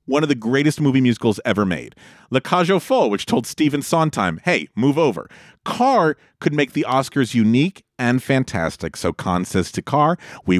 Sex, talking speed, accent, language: male, 185 wpm, American, English